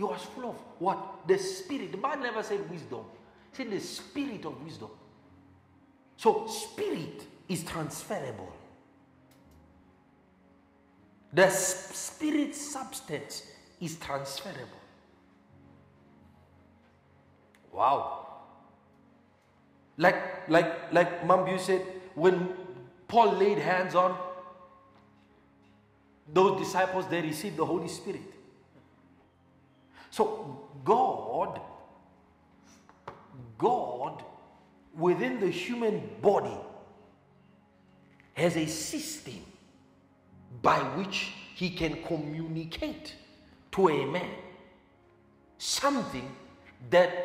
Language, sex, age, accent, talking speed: English, male, 50-69, South African, 85 wpm